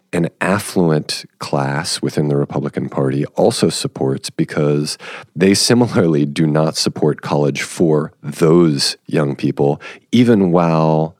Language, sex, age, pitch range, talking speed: English, male, 40-59, 70-80 Hz, 120 wpm